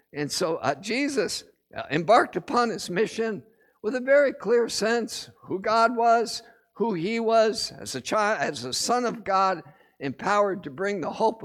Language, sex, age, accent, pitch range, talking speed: English, male, 60-79, American, 195-240 Hz, 170 wpm